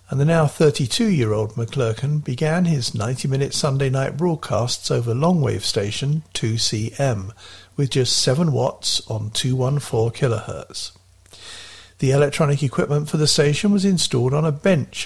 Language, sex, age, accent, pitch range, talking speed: English, male, 50-69, British, 120-155 Hz, 130 wpm